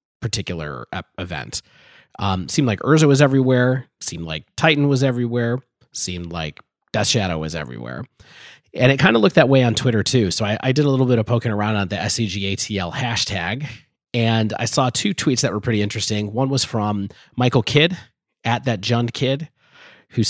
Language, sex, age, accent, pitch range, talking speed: English, male, 30-49, American, 100-135 Hz, 185 wpm